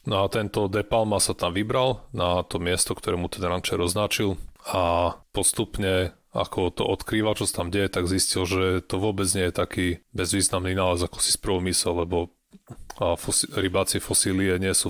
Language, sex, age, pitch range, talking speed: Slovak, male, 30-49, 90-100 Hz, 165 wpm